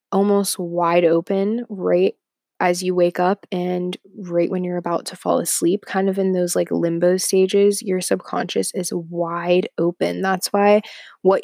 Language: English